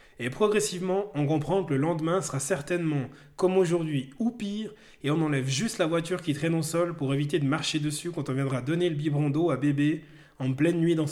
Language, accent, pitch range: French, French, 140-180 Hz